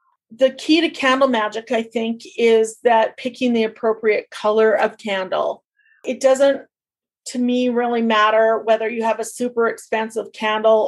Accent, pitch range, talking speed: American, 215-245 Hz, 155 wpm